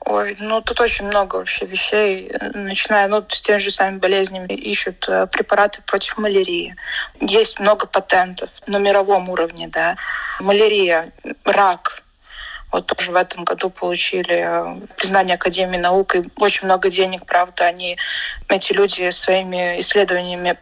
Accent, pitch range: native, 190-225 Hz